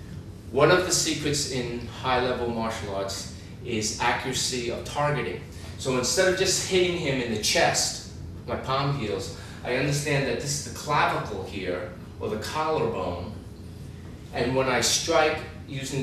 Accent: American